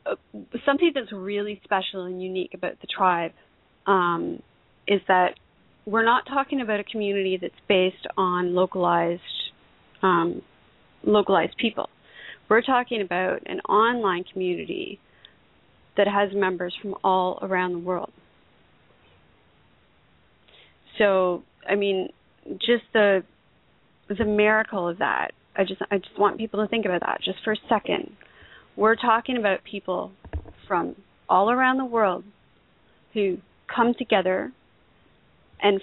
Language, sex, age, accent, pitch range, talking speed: English, female, 30-49, American, 185-215 Hz, 125 wpm